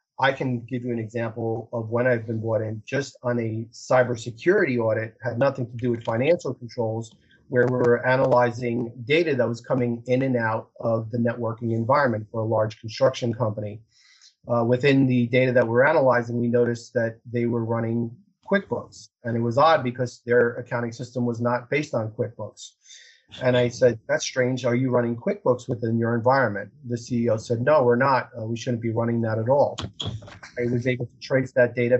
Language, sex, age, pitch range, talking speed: English, male, 30-49, 115-125 Hz, 195 wpm